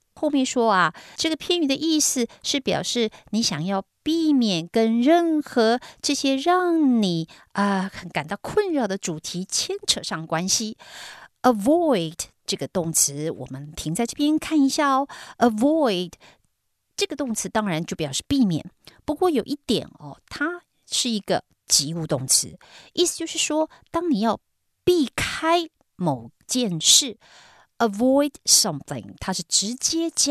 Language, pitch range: Chinese, 175-290 Hz